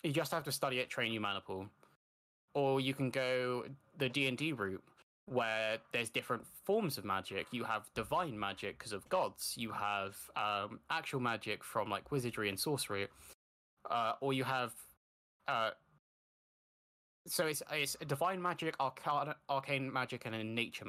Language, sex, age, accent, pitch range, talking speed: English, male, 10-29, British, 105-140 Hz, 160 wpm